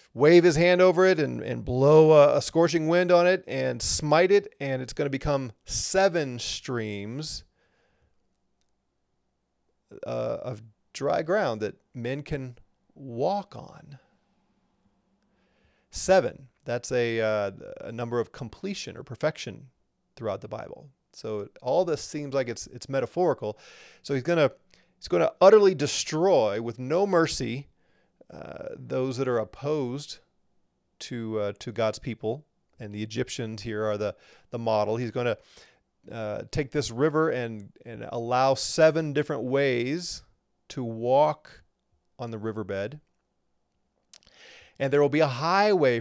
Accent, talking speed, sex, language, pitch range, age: American, 140 wpm, male, English, 115-155 Hz, 30-49